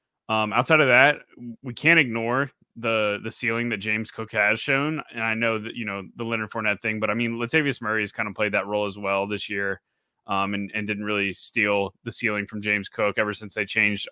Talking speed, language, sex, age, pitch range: 235 wpm, English, male, 20-39, 105-120 Hz